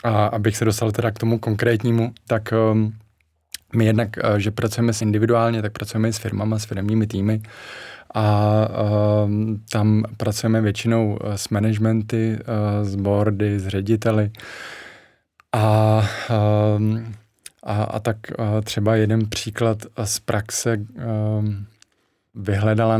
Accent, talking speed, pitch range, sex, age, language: native, 135 wpm, 105-110 Hz, male, 20-39, Czech